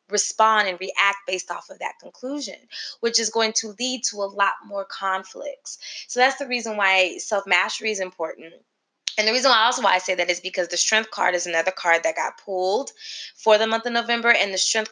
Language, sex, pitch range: English, female, 180-230 Hz